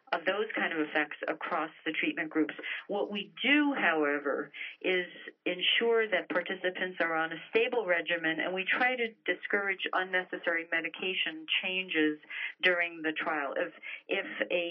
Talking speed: 145 wpm